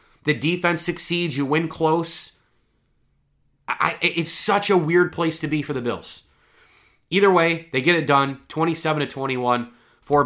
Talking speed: 160 wpm